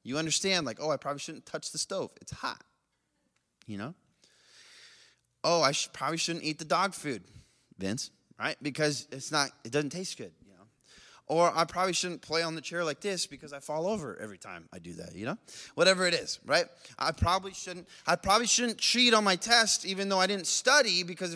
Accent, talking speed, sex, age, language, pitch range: American, 210 wpm, male, 20-39, English, 125-180 Hz